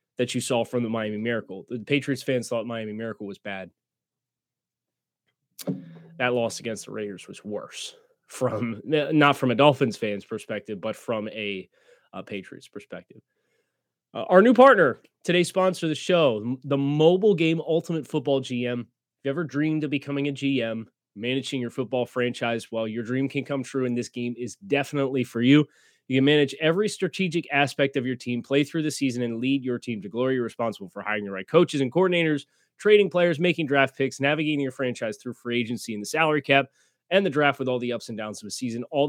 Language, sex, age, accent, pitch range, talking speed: English, male, 20-39, American, 120-150 Hz, 205 wpm